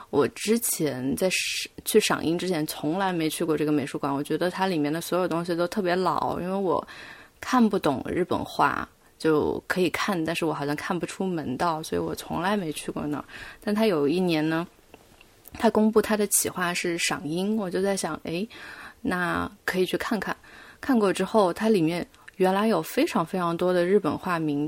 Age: 20-39